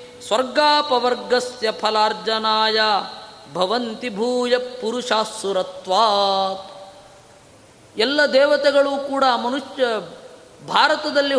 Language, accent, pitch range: Kannada, native, 230-280 Hz